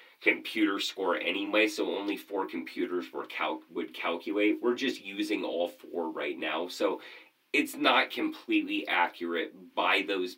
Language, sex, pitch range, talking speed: English, male, 290-370 Hz, 145 wpm